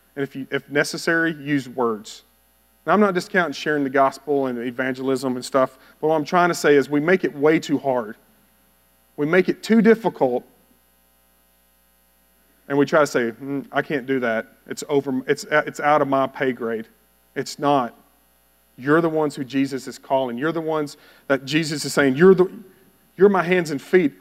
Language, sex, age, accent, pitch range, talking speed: English, male, 40-59, American, 125-155 Hz, 195 wpm